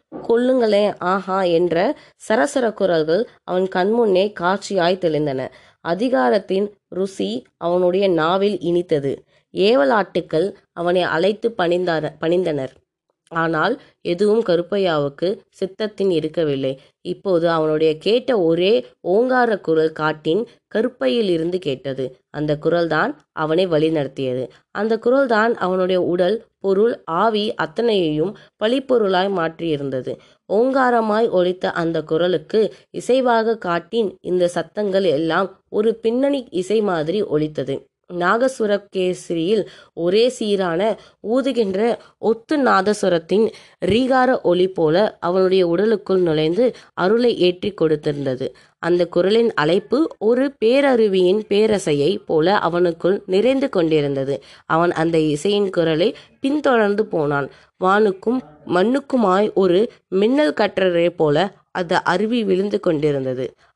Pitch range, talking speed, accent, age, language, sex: 165-220 Hz, 95 wpm, native, 20-39, Tamil, female